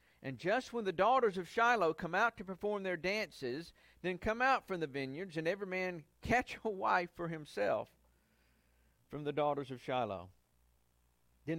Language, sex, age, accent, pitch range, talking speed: English, male, 50-69, American, 105-175 Hz, 170 wpm